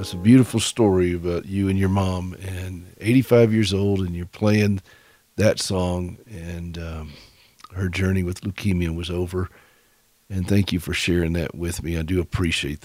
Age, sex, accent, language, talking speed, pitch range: 50-69, male, American, English, 175 wpm, 90-110 Hz